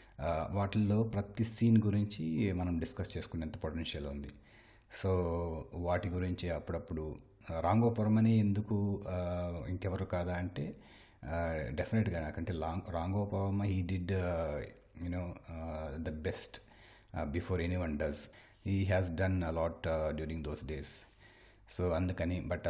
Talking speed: 110 wpm